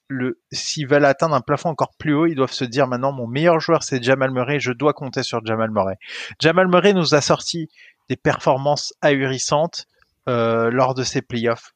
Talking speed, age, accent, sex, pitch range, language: 195 wpm, 30-49, French, male, 130-165 Hz, French